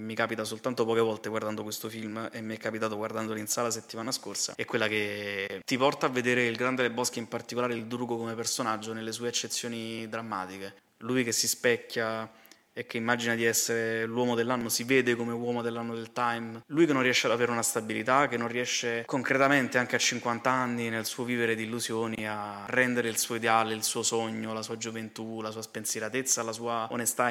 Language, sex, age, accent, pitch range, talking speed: Italian, male, 20-39, native, 110-120 Hz, 205 wpm